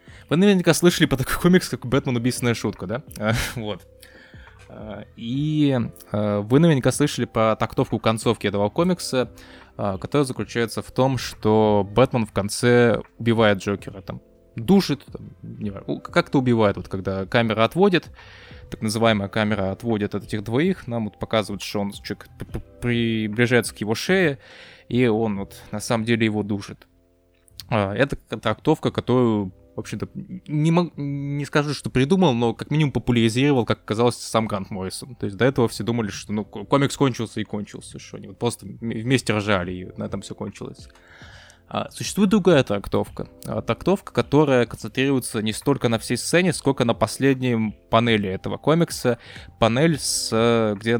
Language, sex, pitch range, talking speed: Russian, male, 105-130 Hz, 150 wpm